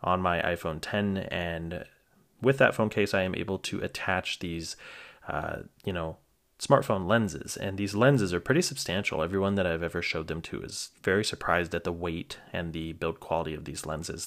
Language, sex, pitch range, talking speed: English, male, 85-105 Hz, 195 wpm